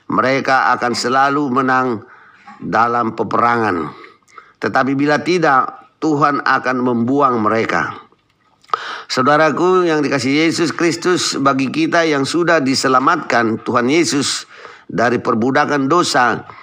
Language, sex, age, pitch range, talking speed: Indonesian, male, 50-69, 130-155 Hz, 100 wpm